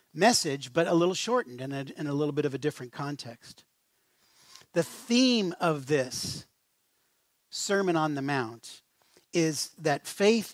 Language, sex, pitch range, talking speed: English, male, 140-180 Hz, 140 wpm